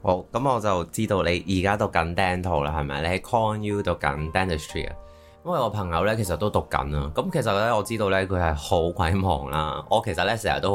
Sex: male